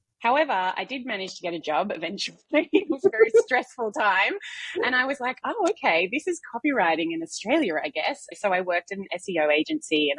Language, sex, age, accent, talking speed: English, female, 20-39, Australian, 210 wpm